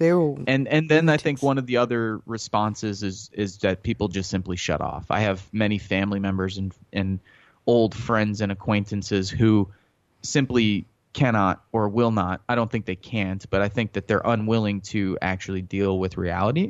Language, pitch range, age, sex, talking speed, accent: English, 95-120 Hz, 30-49, male, 185 wpm, American